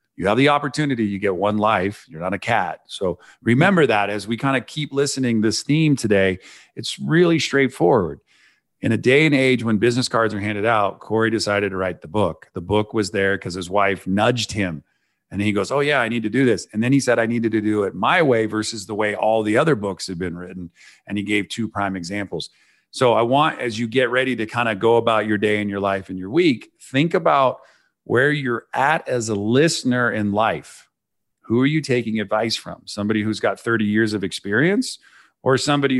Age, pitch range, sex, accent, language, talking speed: 40-59, 100-125 Hz, male, American, English, 225 wpm